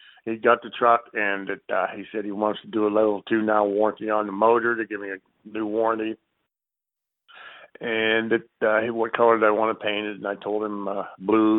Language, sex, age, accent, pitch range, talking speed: English, male, 50-69, American, 100-110 Hz, 230 wpm